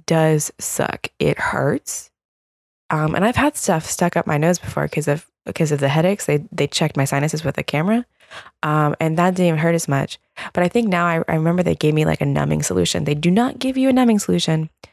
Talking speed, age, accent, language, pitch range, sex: 235 wpm, 20-39, American, English, 170-235 Hz, female